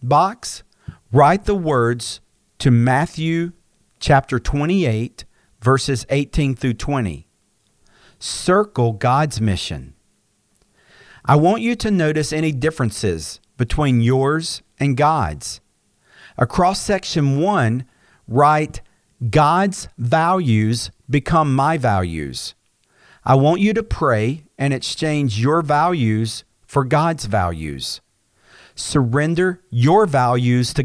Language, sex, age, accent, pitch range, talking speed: English, male, 50-69, American, 115-160 Hz, 100 wpm